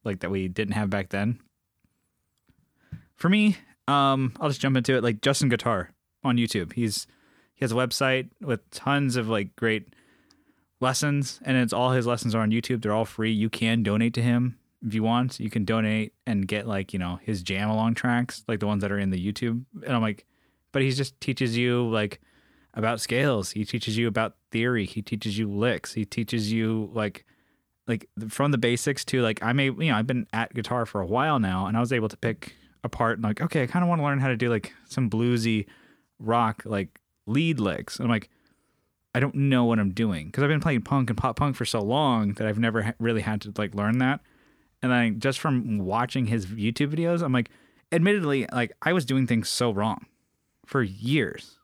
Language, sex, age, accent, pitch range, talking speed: English, male, 20-39, American, 110-130 Hz, 215 wpm